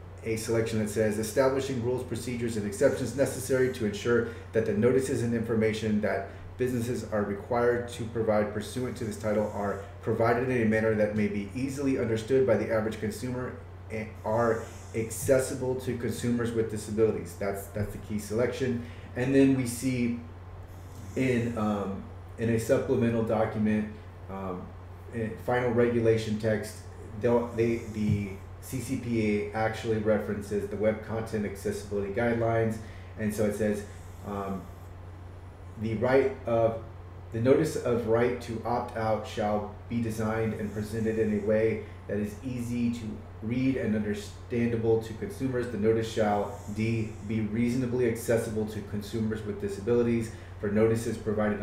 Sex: male